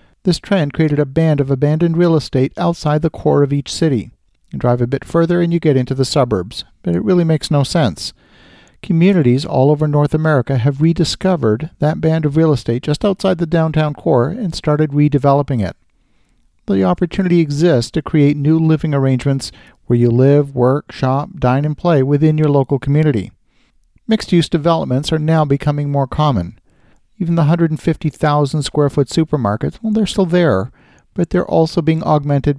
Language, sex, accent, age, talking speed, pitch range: English, male, American, 50-69, 170 wpm, 135-165 Hz